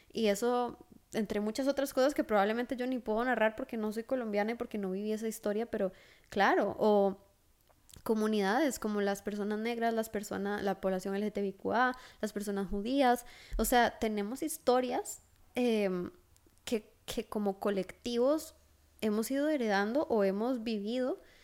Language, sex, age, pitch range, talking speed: Spanish, female, 10-29, 195-240 Hz, 150 wpm